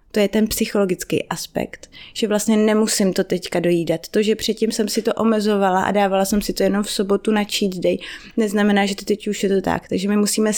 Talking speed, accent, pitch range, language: 225 wpm, native, 180-210 Hz, Czech